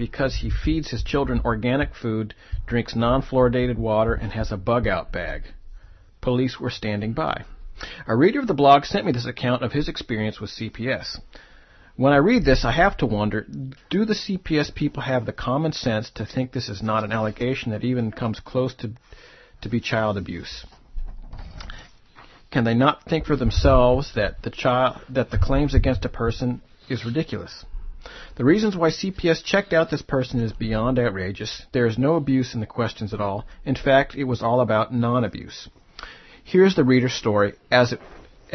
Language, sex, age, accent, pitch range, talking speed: English, male, 50-69, American, 110-135 Hz, 180 wpm